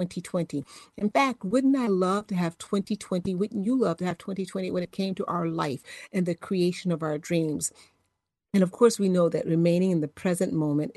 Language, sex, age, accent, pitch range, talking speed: English, female, 50-69, American, 170-220 Hz, 210 wpm